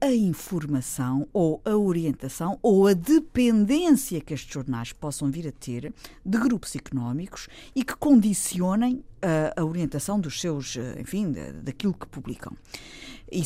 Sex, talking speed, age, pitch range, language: female, 145 wpm, 50-69, 150-205 Hz, Portuguese